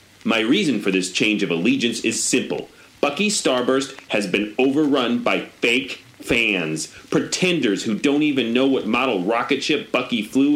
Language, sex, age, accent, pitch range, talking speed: English, male, 40-59, American, 125-180 Hz, 160 wpm